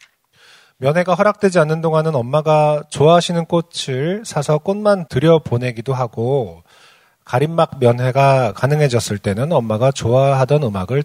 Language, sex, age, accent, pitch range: Korean, male, 40-59, native, 115-155 Hz